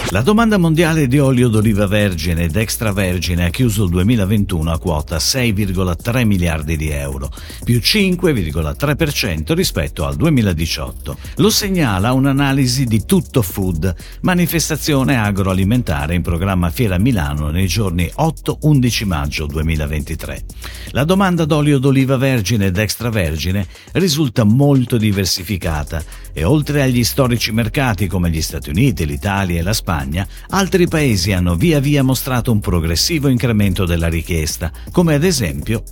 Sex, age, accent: male, 50-69, native